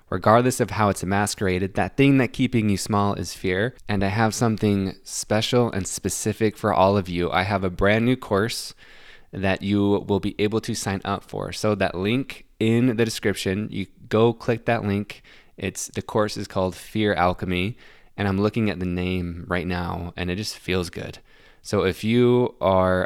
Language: English